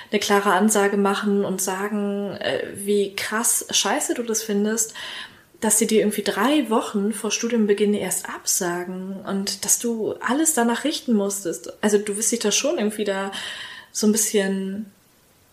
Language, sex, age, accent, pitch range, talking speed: German, female, 20-39, German, 200-230 Hz, 155 wpm